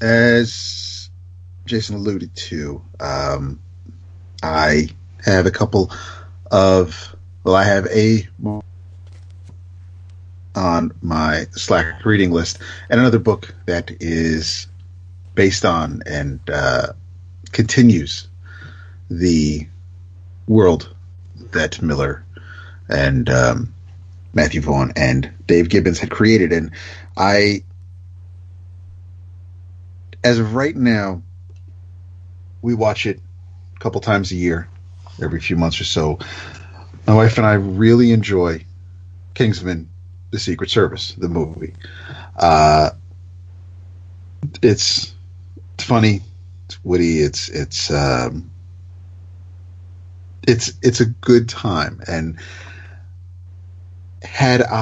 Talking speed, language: 95 wpm, English